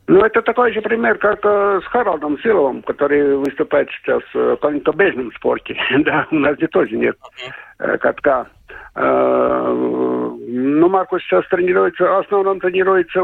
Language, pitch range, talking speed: Russian, 125-195 Hz, 135 wpm